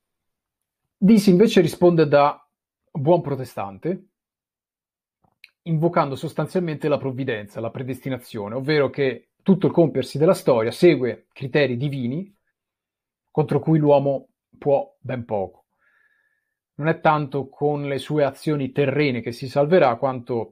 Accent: native